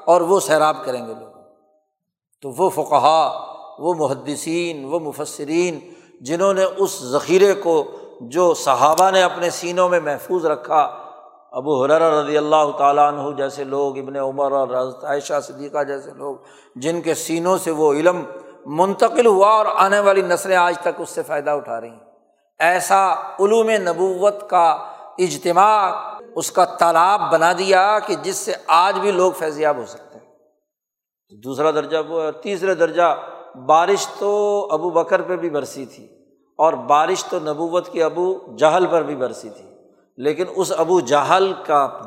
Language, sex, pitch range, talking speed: Urdu, male, 150-190 Hz, 160 wpm